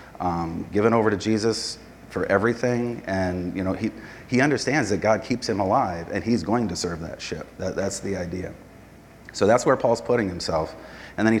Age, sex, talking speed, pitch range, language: 30-49, male, 195 wpm, 95-110 Hz, English